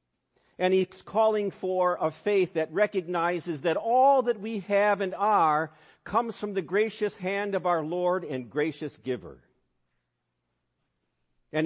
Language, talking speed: English, 140 wpm